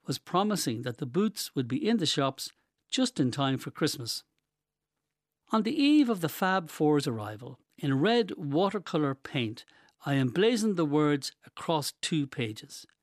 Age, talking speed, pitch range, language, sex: 60-79, 155 wpm, 130-190 Hz, English, male